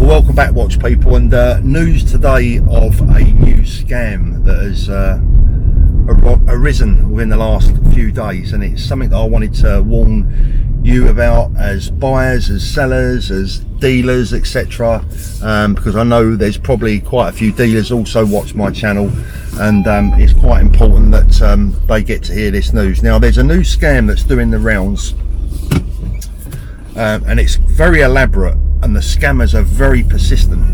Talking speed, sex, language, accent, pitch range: 165 wpm, male, English, British, 75-110 Hz